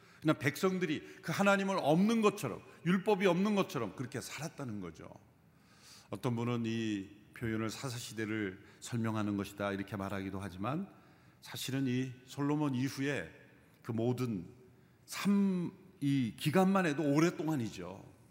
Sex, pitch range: male, 110-165 Hz